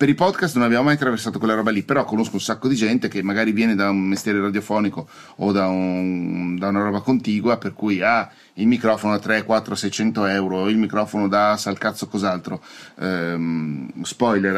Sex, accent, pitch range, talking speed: male, native, 95-115 Hz, 200 wpm